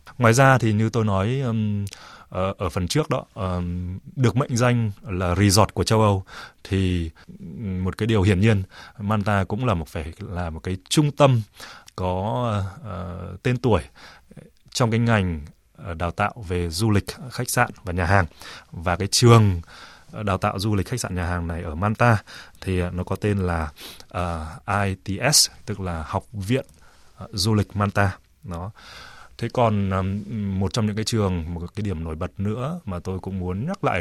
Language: Vietnamese